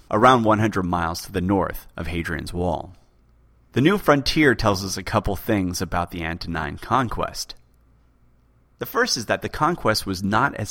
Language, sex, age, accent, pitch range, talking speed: English, male, 30-49, American, 85-115 Hz, 170 wpm